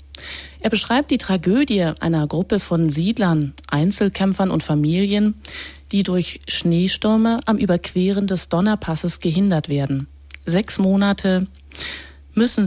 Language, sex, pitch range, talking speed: German, female, 155-205 Hz, 110 wpm